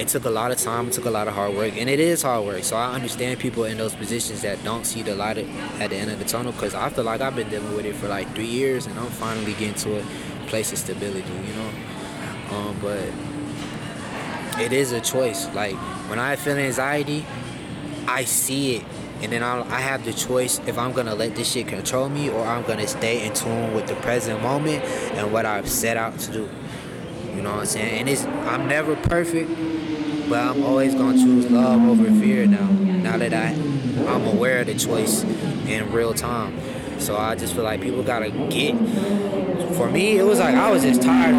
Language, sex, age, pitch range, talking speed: English, male, 20-39, 110-150 Hz, 220 wpm